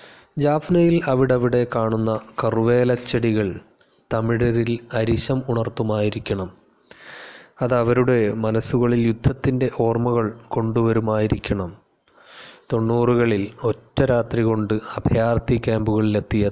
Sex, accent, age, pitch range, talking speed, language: male, native, 20-39, 105-115 Hz, 70 wpm, Malayalam